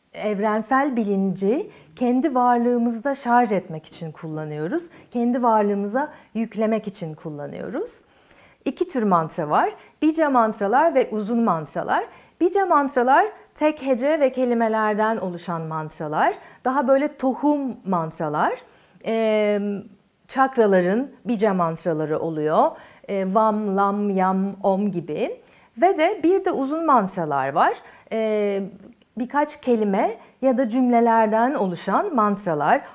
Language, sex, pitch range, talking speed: Turkish, female, 195-260 Hz, 110 wpm